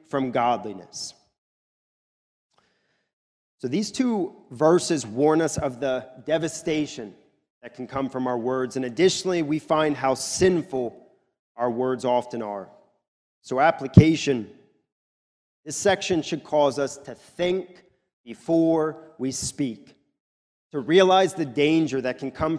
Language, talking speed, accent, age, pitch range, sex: English, 120 wpm, American, 30-49, 130-165 Hz, male